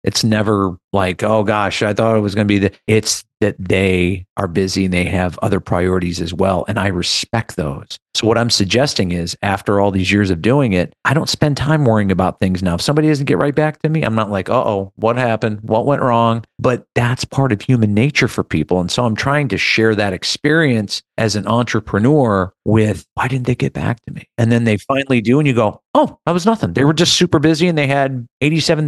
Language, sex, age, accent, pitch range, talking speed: English, male, 40-59, American, 95-125 Hz, 235 wpm